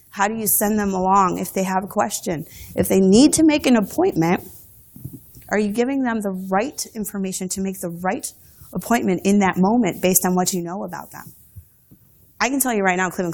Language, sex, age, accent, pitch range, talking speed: English, female, 20-39, American, 175-230 Hz, 210 wpm